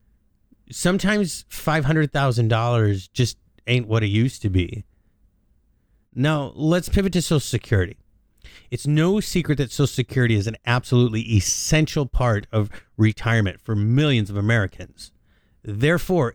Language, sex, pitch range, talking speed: English, male, 105-135 Hz, 120 wpm